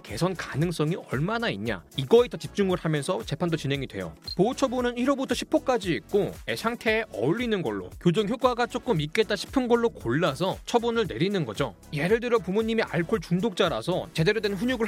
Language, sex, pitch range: Korean, male, 160-235 Hz